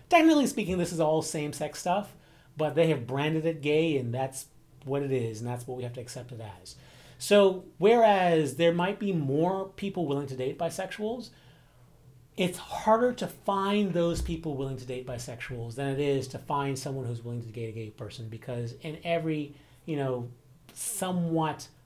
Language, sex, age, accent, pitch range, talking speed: English, male, 30-49, American, 125-165 Hz, 185 wpm